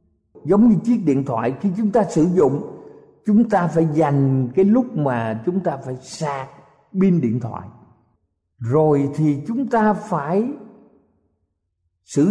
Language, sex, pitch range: Thai, male, 120-200 Hz